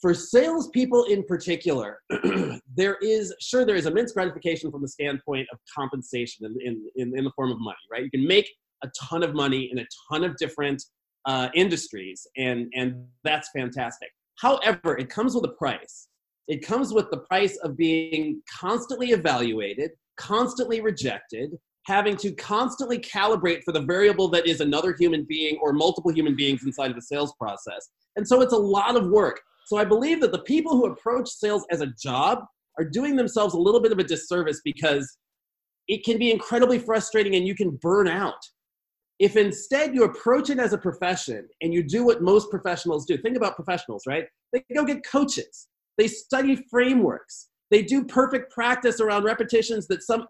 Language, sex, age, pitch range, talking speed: English, male, 30-49, 155-235 Hz, 185 wpm